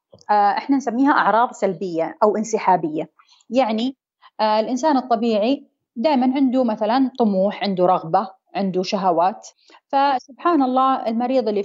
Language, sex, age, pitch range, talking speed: Arabic, female, 30-49, 200-255 Hz, 110 wpm